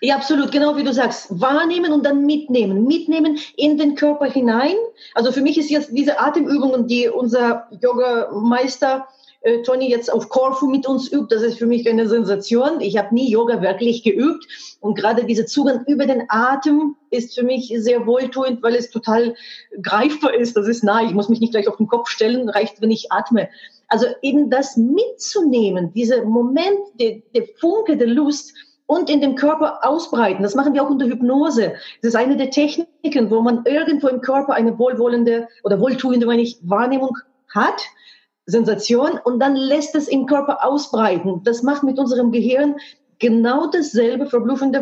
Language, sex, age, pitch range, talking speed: German, female, 30-49, 230-285 Hz, 180 wpm